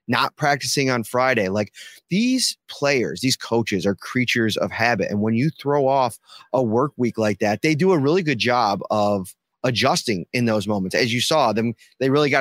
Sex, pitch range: male, 110-140 Hz